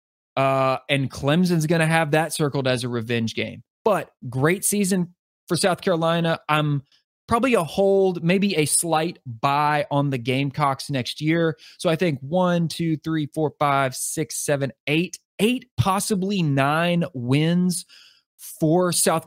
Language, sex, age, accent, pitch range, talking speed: English, male, 20-39, American, 135-170 Hz, 145 wpm